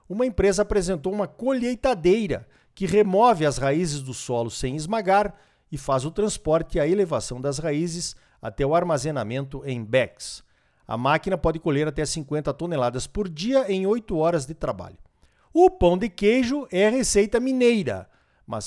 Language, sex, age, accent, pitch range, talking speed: Portuguese, male, 50-69, Brazilian, 135-205 Hz, 160 wpm